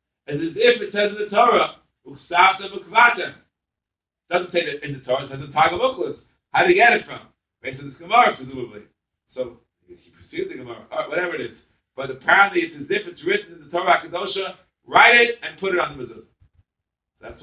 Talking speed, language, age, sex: 205 wpm, English, 60-79, male